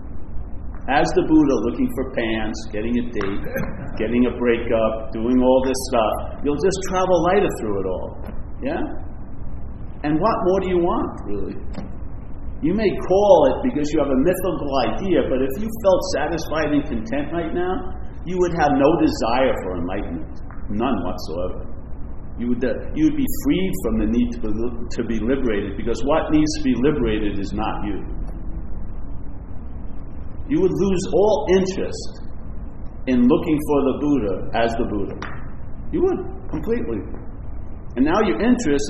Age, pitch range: 50-69, 110-185 Hz